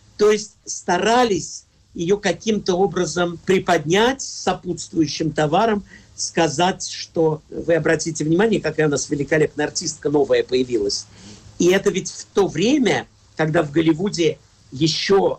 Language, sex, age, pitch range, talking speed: Russian, male, 50-69, 150-190 Hz, 120 wpm